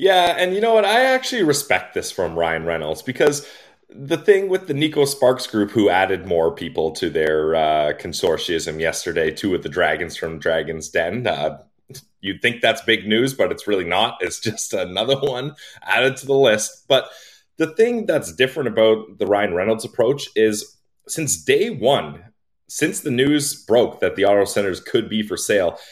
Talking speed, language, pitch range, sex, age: 185 wpm, English, 105-150 Hz, male, 30-49